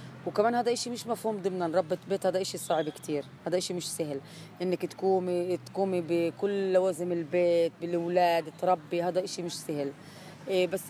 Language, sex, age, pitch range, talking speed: Arabic, female, 20-39, 165-195 Hz, 160 wpm